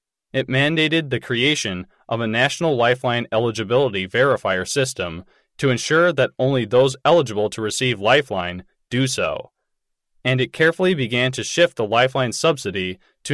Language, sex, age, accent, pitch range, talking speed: English, male, 20-39, American, 115-145 Hz, 145 wpm